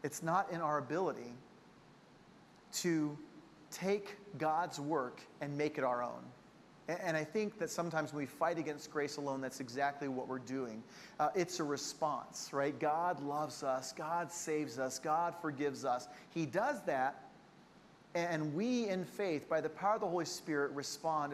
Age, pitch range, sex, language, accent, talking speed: 40-59, 150-200 Hz, male, English, American, 165 wpm